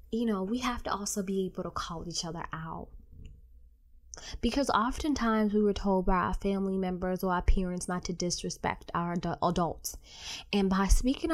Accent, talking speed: American, 175 wpm